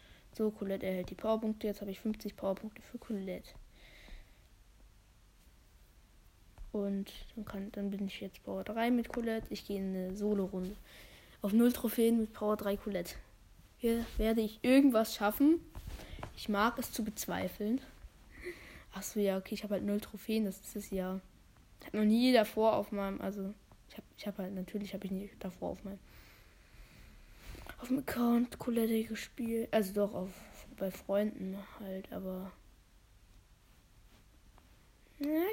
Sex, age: female, 20-39